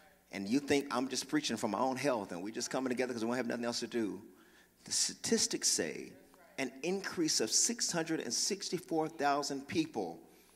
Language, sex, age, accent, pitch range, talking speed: English, male, 40-59, American, 120-185 Hz, 180 wpm